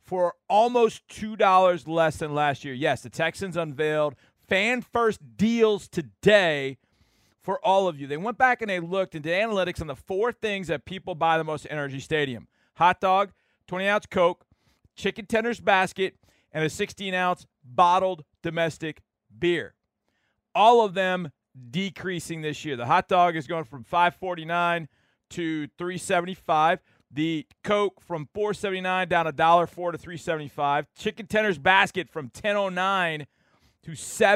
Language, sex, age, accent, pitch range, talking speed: English, male, 40-59, American, 155-190 Hz, 140 wpm